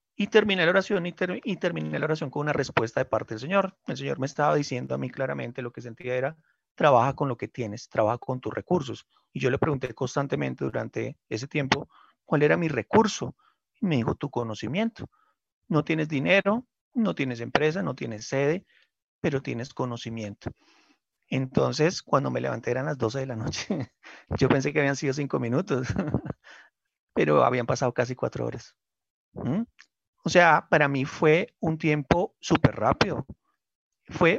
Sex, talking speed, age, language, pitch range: male, 175 wpm, 30-49, Spanish, 120-170 Hz